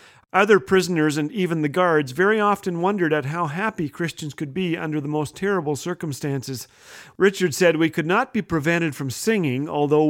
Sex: male